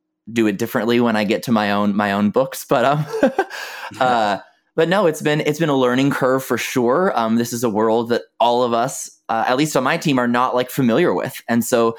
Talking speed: 240 wpm